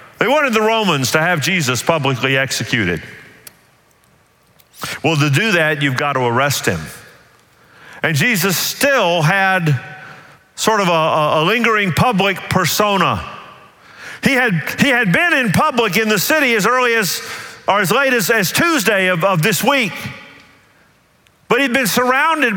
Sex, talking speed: male, 145 wpm